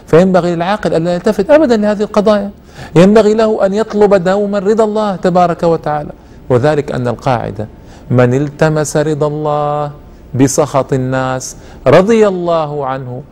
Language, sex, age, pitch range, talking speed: Arabic, male, 50-69, 130-185 Hz, 130 wpm